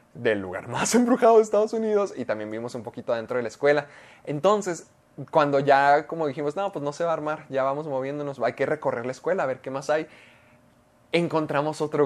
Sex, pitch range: male, 145-195 Hz